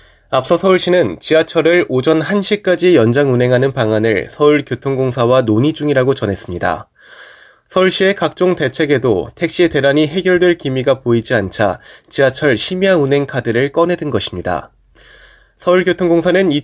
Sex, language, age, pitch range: male, Korean, 20-39, 125-165 Hz